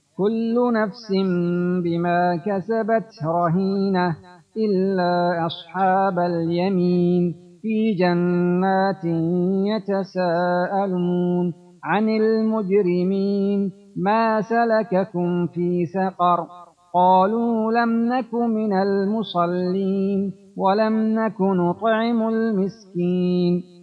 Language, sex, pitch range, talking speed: Persian, male, 155-200 Hz, 65 wpm